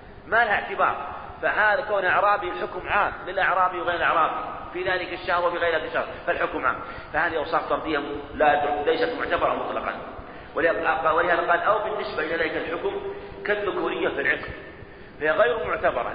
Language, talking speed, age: Arabic, 150 wpm, 40-59